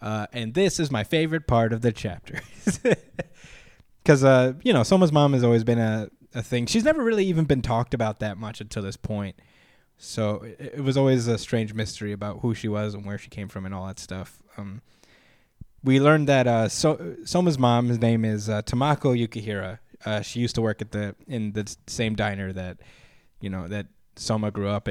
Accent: American